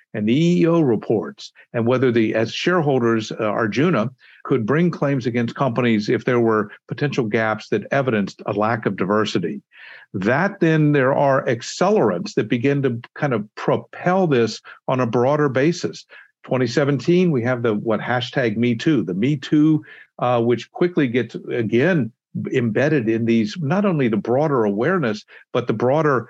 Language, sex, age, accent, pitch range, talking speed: English, male, 50-69, American, 115-150 Hz, 160 wpm